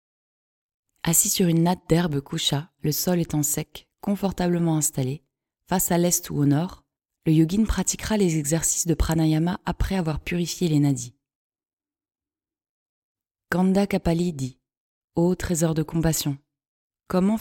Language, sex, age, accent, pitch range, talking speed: French, female, 20-39, French, 150-180 Hz, 135 wpm